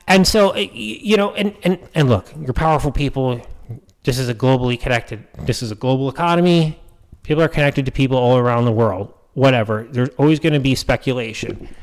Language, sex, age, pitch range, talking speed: English, male, 30-49, 130-175 Hz, 185 wpm